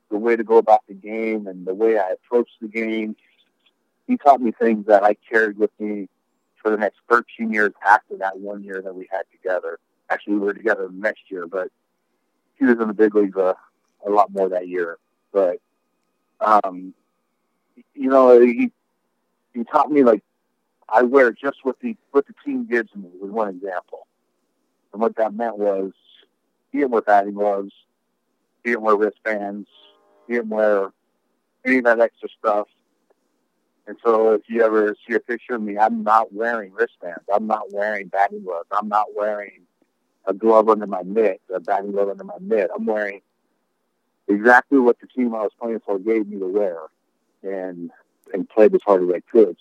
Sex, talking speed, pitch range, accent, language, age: male, 185 wpm, 100-115 Hz, American, English, 50-69